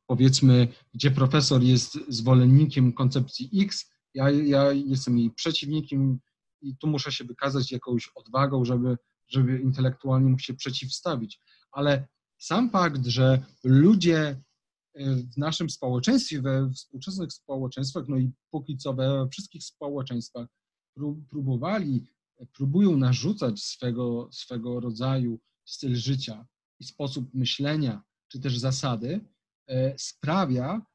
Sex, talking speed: male, 110 wpm